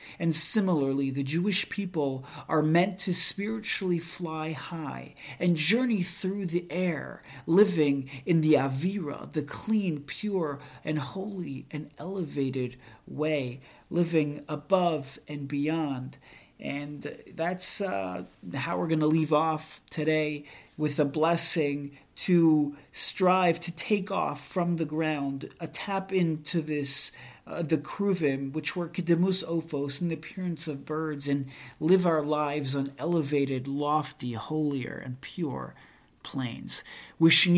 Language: English